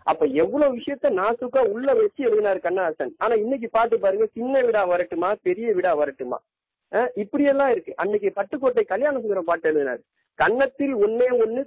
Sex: male